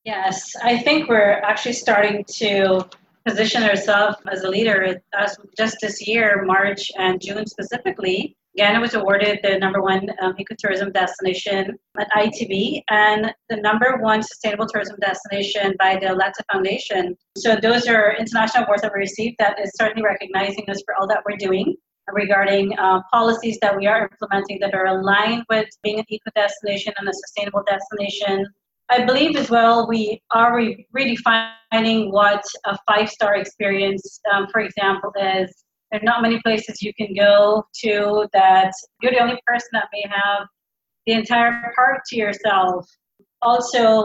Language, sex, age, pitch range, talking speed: English, female, 30-49, 195-225 Hz, 160 wpm